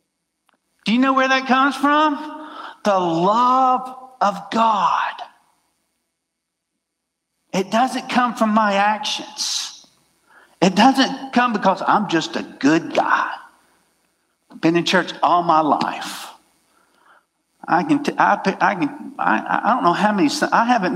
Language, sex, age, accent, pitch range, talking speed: English, male, 50-69, American, 200-275 Hz, 120 wpm